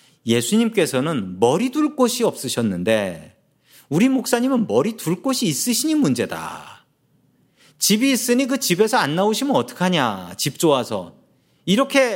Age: 40-59